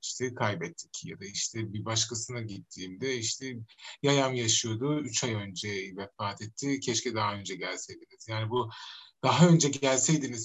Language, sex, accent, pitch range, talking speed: Turkish, male, native, 115-150 Hz, 145 wpm